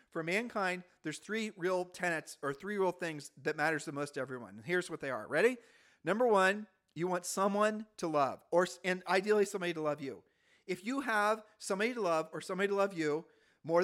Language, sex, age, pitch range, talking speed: English, male, 40-59, 155-200 Hz, 210 wpm